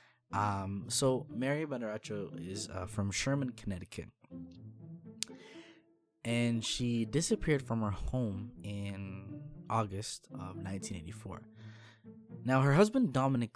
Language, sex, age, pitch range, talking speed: English, male, 20-39, 100-130 Hz, 100 wpm